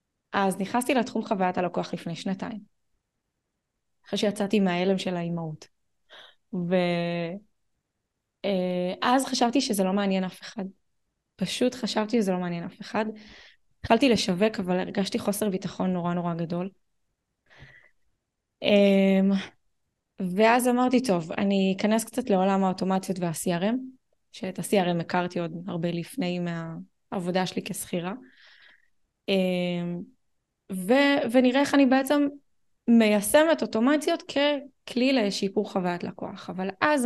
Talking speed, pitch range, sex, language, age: 105 wpm, 180-235 Hz, female, Hebrew, 20-39